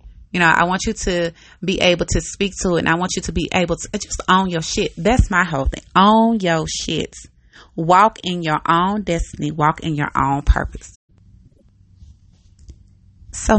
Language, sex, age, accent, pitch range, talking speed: English, female, 30-49, American, 145-185 Hz, 185 wpm